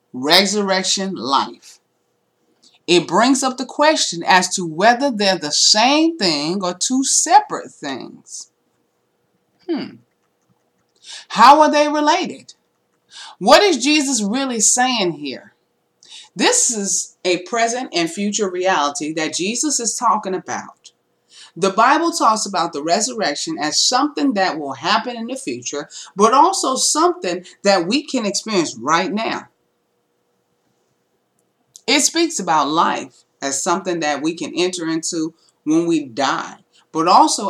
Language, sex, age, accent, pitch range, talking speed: English, female, 30-49, American, 170-285 Hz, 130 wpm